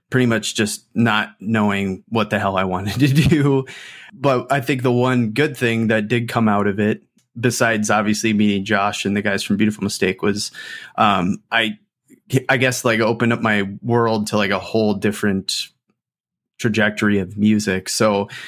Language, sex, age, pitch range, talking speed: English, male, 20-39, 105-125 Hz, 175 wpm